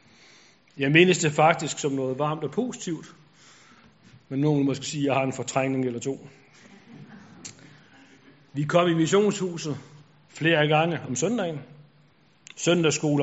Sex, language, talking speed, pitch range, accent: male, Danish, 130 wpm, 140-160 Hz, native